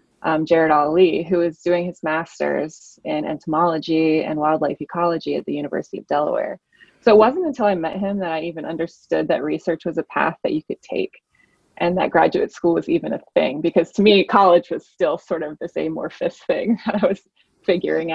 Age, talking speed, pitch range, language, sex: 20-39, 200 wpm, 160-190 Hz, English, female